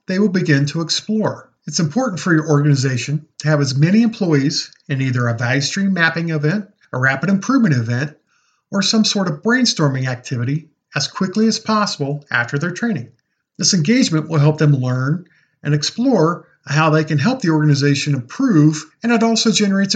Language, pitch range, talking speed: English, 145-200 Hz, 175 wpm